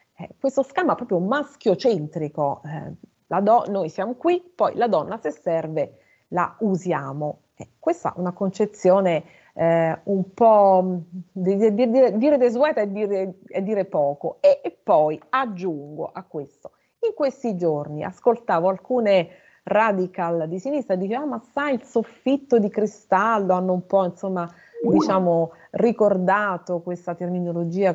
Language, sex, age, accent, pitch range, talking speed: Italian, female, 30-49, native, 170-230 Hz, 135 wpm